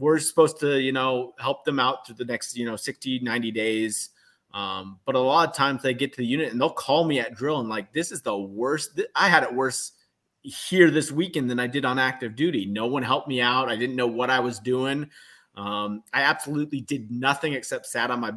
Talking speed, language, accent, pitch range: 240 wpm, English, American, 110-140 Hz